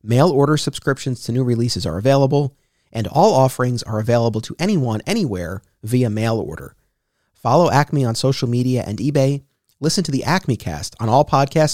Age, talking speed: 30-49, 175 wpm